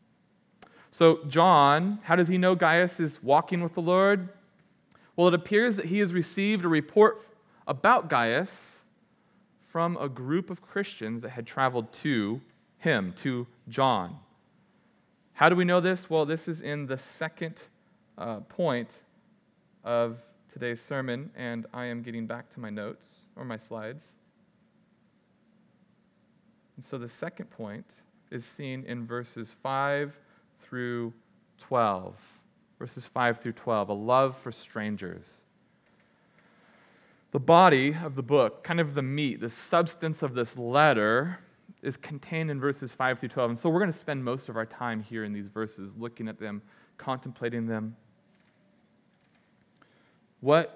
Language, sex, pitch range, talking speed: English, male, 115-180 Hz, 145 wpm